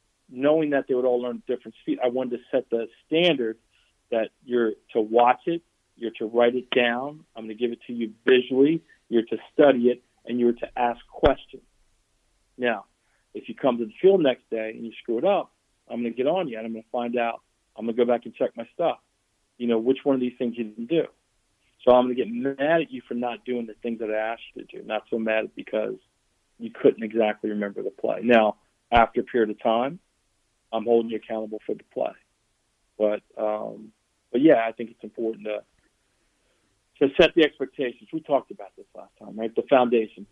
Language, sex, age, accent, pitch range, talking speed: English, male, 40-59, American, 110-130 Hz, 225 wpm